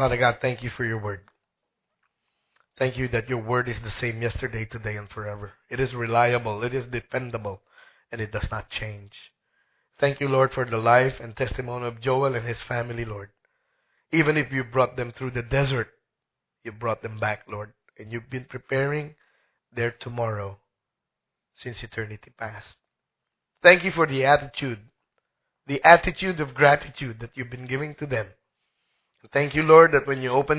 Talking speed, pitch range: 175 wpm, 115-140 Hz